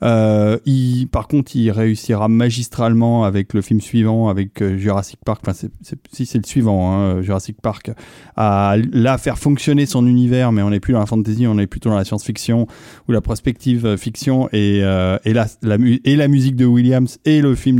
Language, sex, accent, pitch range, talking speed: French, male, French, 110-140 Hz, 200 wpm